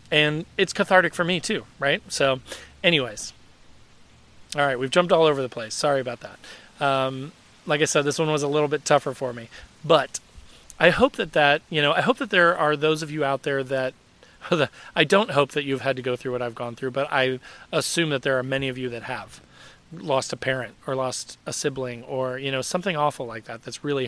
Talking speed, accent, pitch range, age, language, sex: 225 wpm, American, 130-160 Hz, 40-59, English, male